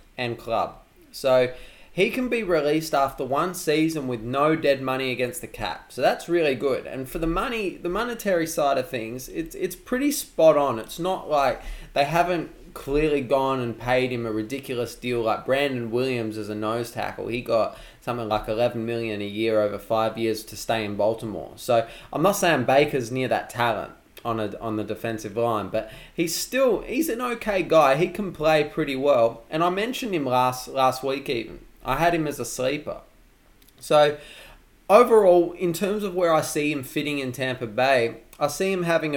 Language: English